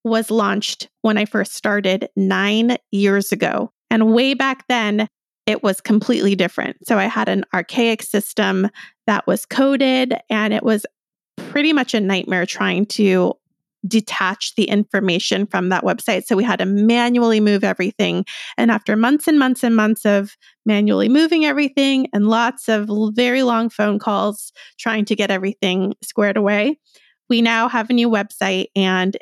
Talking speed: 160 wpm